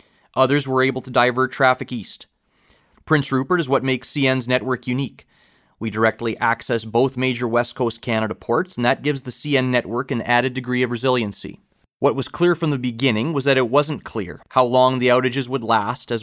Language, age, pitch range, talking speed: English, 30-49, 115-130 Hz, 195 wpm